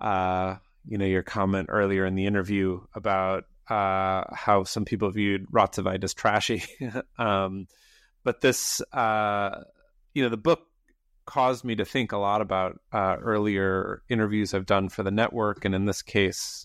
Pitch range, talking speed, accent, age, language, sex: 95-115 Hz, 160 wpm, American, 30-49, English, male